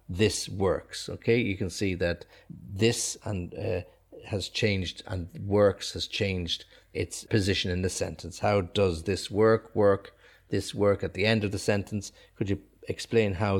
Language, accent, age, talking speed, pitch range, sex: English, Irish, 50-69, 170 wpm, 95-115 Hz, male